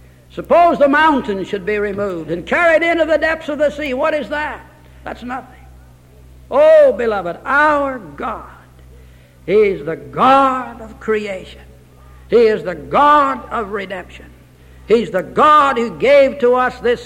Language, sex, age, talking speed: English, male, 60-79, 150 wpm